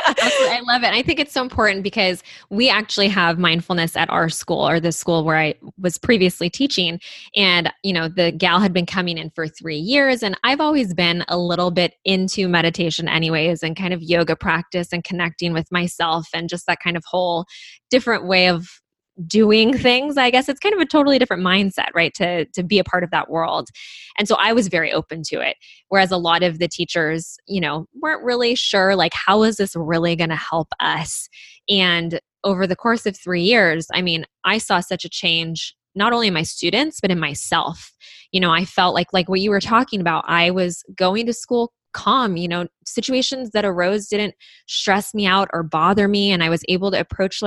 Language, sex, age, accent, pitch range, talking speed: English, female, 20-39, American, 170-210 Hz, 215 wpm